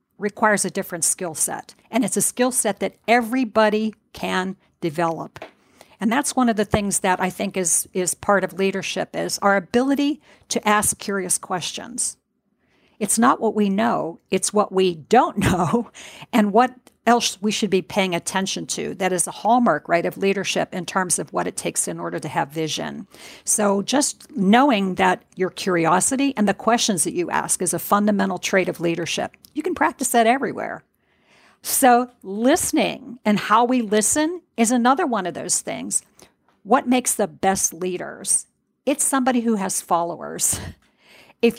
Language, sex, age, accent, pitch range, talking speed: English, female, 50-69, American, 185-245 Hz, 170 wpm